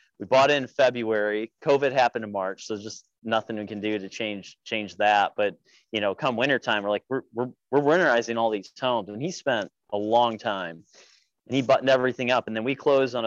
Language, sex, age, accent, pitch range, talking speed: English, male, 30-49, American, 110-150 Hz, 215 wpm